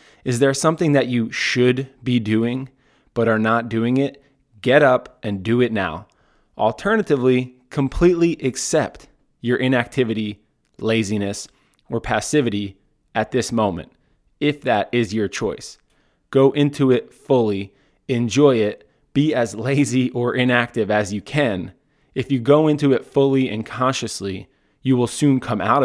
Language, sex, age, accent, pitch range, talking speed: English, male, 20-39, American, 110-135 Hz, 145 wpm